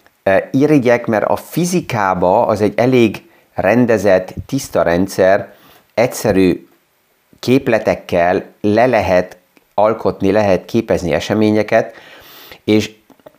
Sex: male